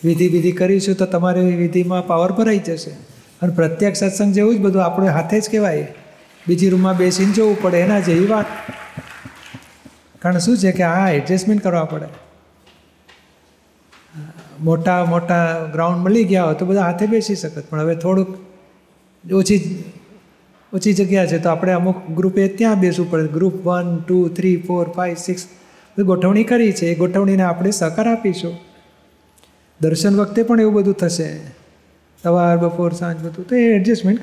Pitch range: 170-195 Hz